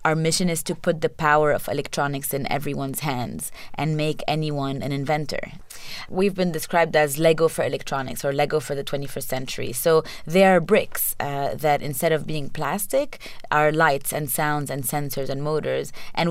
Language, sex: English, female